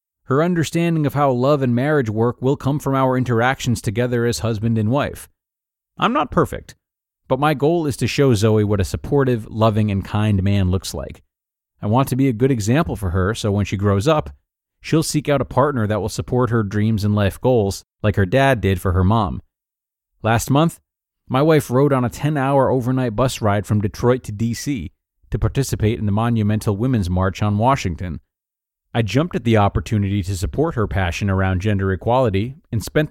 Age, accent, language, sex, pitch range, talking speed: 30-49, American, English, male, 100-130 Hz, 200 wpm